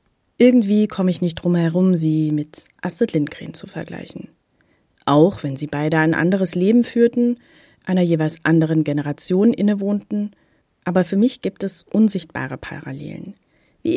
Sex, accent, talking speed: female, German, 140 wpm